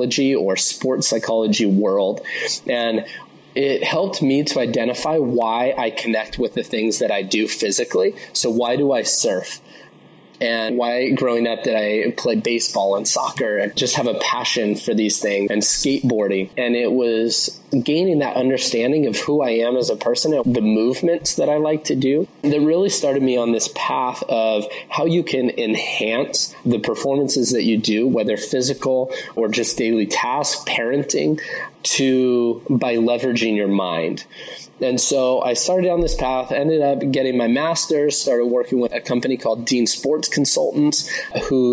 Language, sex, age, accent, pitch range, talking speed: English, male, 20-39, American, 115-150 Hz, 170 wpm